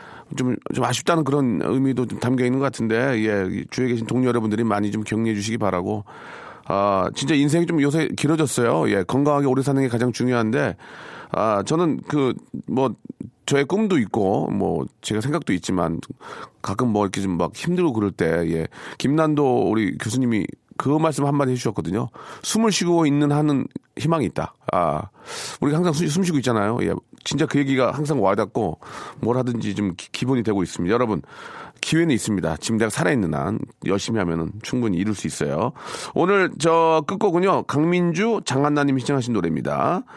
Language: Korean